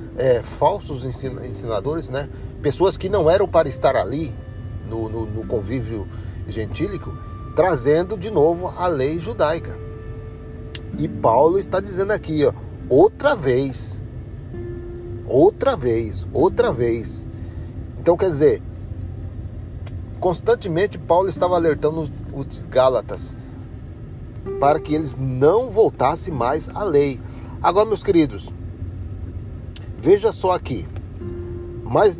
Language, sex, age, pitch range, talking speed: Arabic, male, 40-59, 105-145 Hz, 110 wpm